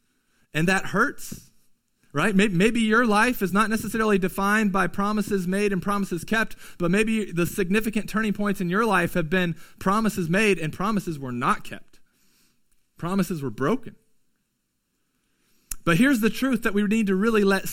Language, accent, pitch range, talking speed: English, American, 170-215 Hz, 165 wpm